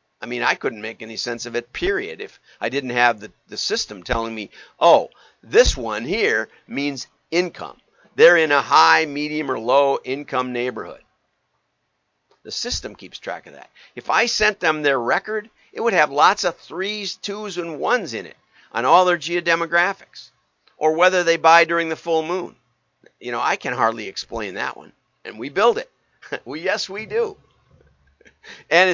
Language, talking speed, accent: English, 180 wpm, American